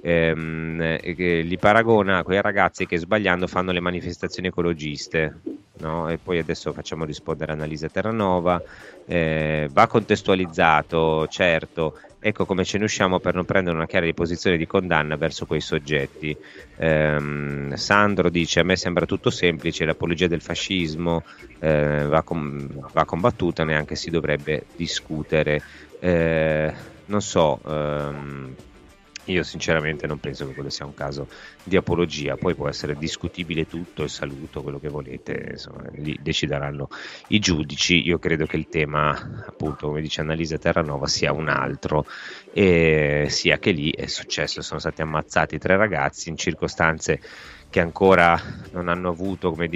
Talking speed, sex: 150 wpm, male